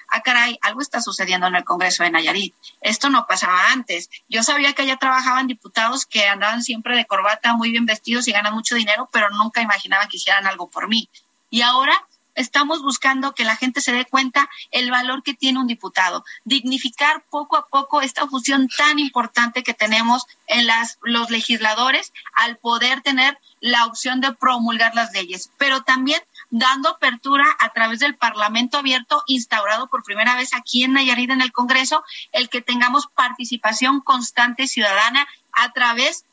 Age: 30-49